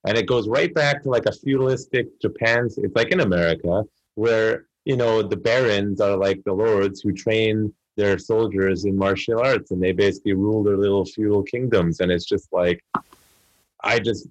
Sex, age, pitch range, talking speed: male, 30-49, 85-100 Hz, 185 wpm